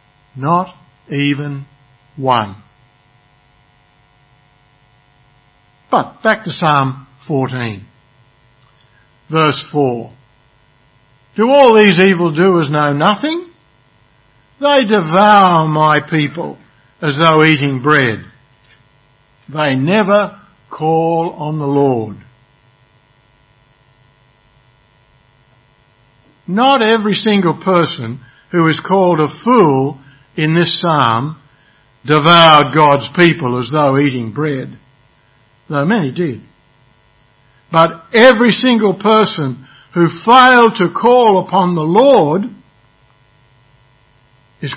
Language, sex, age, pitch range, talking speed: English, male, 60-79, 125-170 Hz, 85 wpm